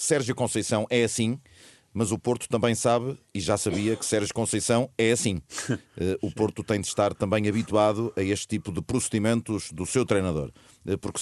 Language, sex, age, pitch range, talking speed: Portuguese, male, 40-59, 100-120 Hz, 175 wpm